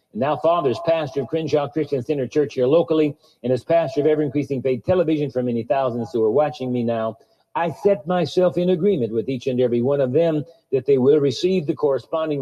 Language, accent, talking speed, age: English, American, 215 wpm, 50-69